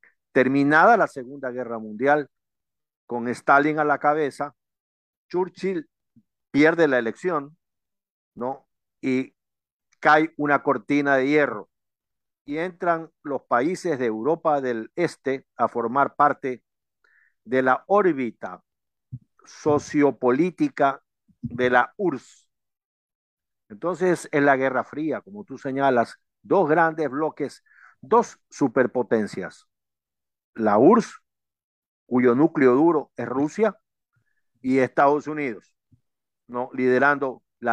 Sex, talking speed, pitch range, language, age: male, 105 wpm, 125-155 Hz, Spanish, 50-69